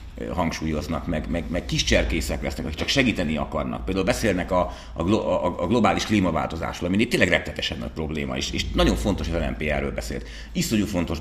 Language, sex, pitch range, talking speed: Hungarian, male, 75-95 Hz, 180 wpm